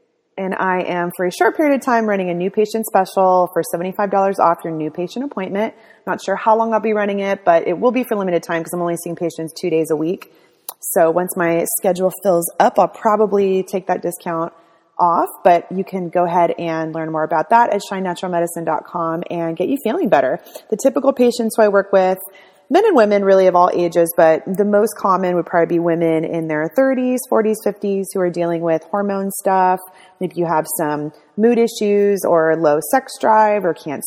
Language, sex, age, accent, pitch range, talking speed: English, female, 30-49, American, 165-205 Hz, 210 wpm